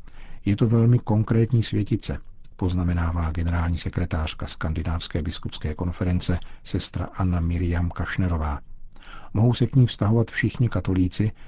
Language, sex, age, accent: Czech, male, 50-69, native